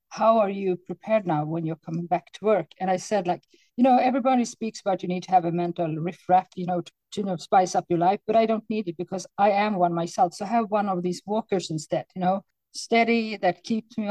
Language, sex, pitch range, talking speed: English, female, 180-215 Hz, 260 wpm